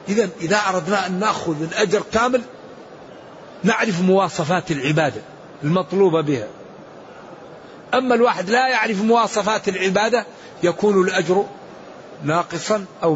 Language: Arabic